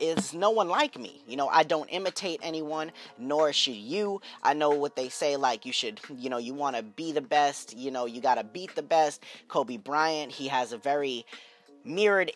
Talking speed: 210 wpm